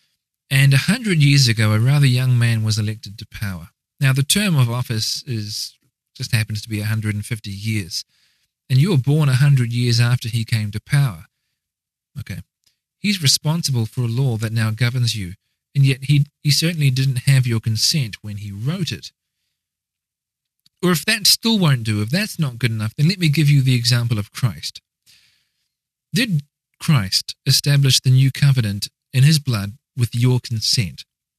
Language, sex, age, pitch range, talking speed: English, male, 40-59, 115-145 Hz, 175 wpm